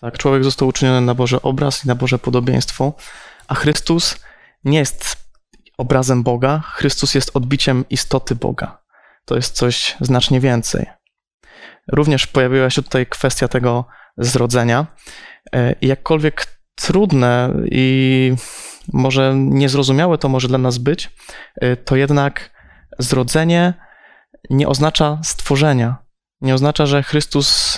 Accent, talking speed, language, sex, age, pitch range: native, 115 wpm, Polish, male, 20-39, 125-140 Hz